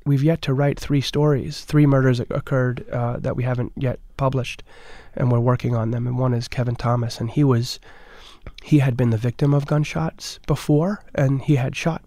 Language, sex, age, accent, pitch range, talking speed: English, male, 30-49, American, 120-140 Hz, 200 wpm